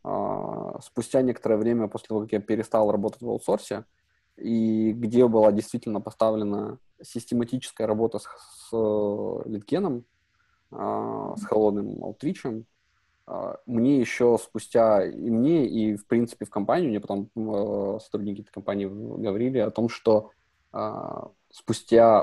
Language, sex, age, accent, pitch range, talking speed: Russian, male, 20-39, native, 100-110 Hz, 120 wpm